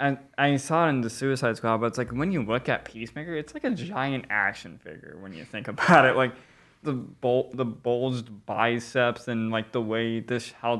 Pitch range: 115-130 Hz